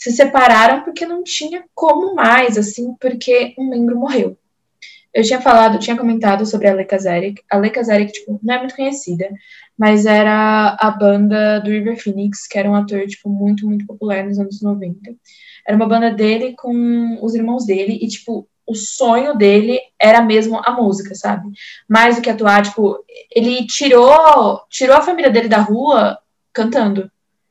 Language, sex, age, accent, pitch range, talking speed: Portuguese, female, 10-29, Brazilian, 205-240 Hz, 170 wpm